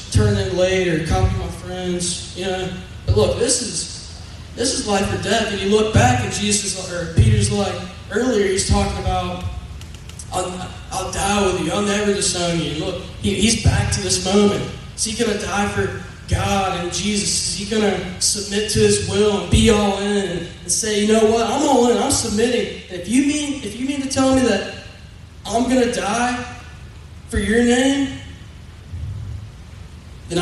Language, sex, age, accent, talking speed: English, male, 20-39, American, 190 wpm